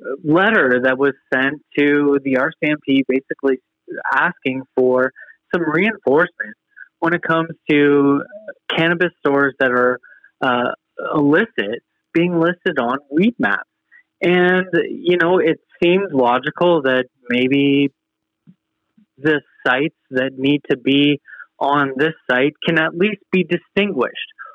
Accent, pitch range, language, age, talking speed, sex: American, 135-175 Hz, English, 30-49, 115 wpm, male